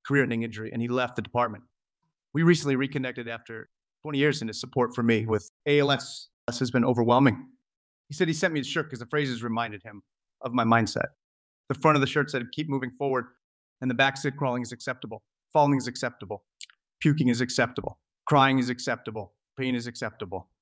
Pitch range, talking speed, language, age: 115-135 Hz, 200 wpm, English, 30-49